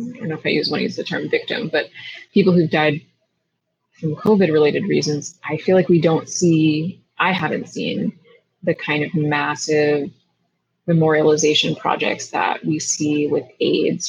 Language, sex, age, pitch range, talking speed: English, female, 20-39, 155-185 Hz, 160 wpm